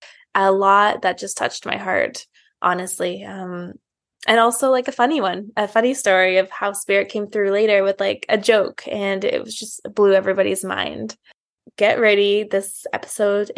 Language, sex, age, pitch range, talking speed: English, female, 20-39, 200-245 Hz, 170 wpm